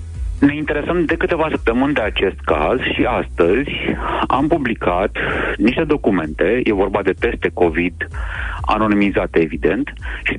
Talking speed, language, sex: 125 wpm, Romanian, male